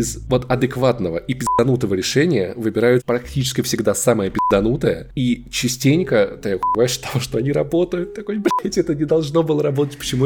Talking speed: 150 wpm